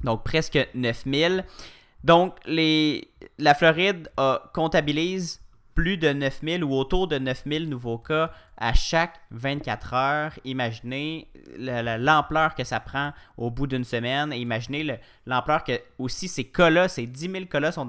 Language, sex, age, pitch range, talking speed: French, male, 30-49, 120-155 Hz, 150 wpm